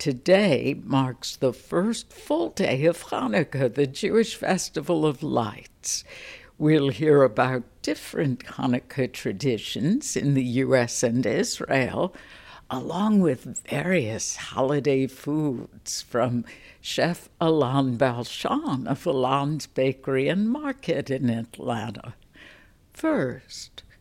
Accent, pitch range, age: American, 130-170 Hz, 60-79